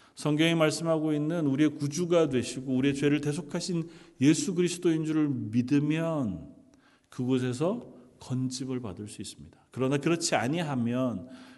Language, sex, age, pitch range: Korean, male, 40-59, 115-155 Hz